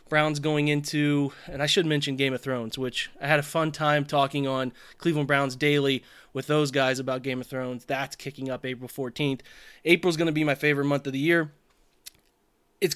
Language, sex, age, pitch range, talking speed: English, male, 20-39, 145-160 Hz, 205 wpm